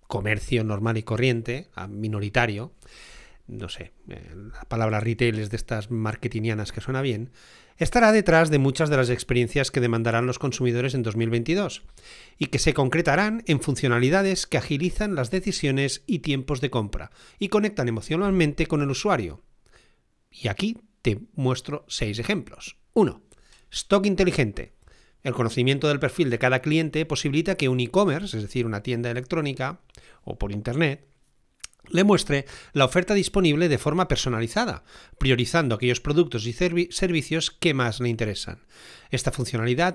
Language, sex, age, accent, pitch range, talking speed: Spanish, male, 40-59, Spanish, 120-165 Hz, 145 wpm